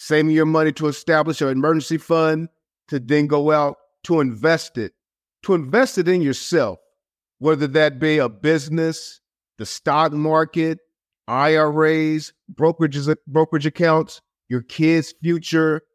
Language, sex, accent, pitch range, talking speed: English, male, American, 145-170 Hz, 130 wpm